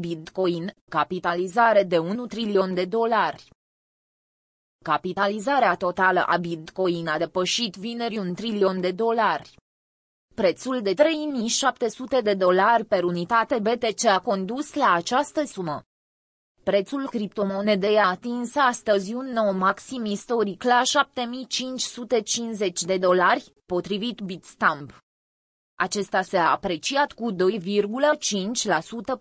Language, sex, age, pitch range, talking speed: Romanian, female, 20-39, 185-240 Hz, 105 wpm